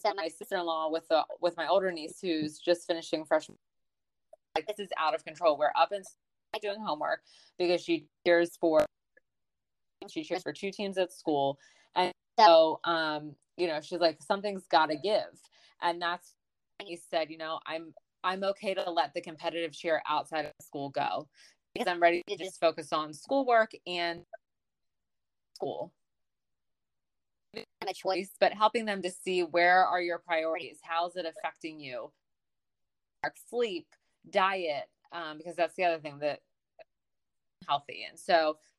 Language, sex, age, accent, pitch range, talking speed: English, female, 20-39, American, 160-195 Hz, 160 wpm